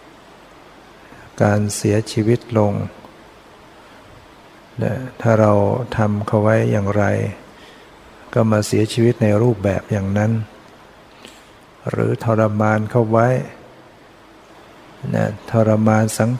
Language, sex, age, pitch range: Thai, male, 60-79, 105-115 Hz